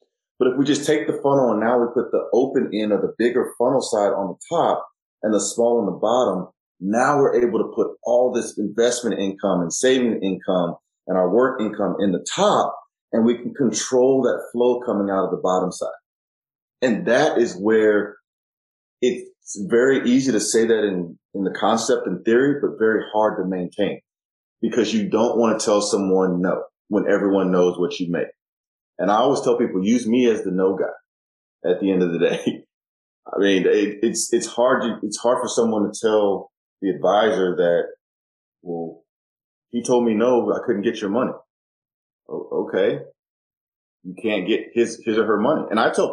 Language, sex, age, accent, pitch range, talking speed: English, male, 30-49, American, 100-130 Hz, 195 wpm